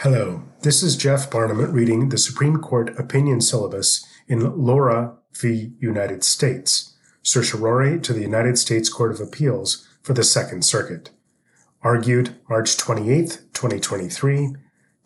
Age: 30-49